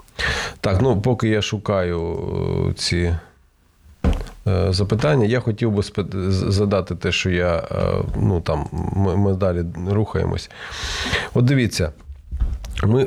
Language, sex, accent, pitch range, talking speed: Ukrainian, male, native, 95-125 Hz, 120 wpm